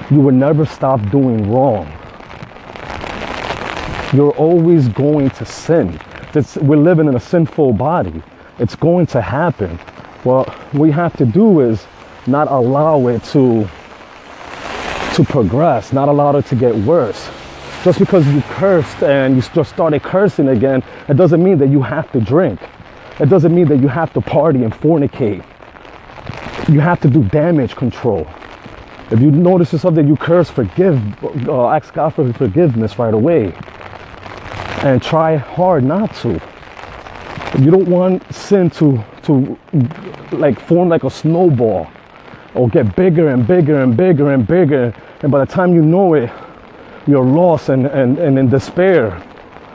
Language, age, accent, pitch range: English, 30-49, American, 125-170 Hz